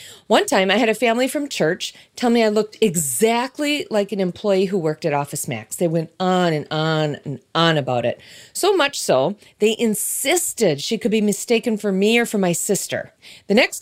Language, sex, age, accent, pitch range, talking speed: English, female, 40-59, American, 185-280 Hz, 205 wpm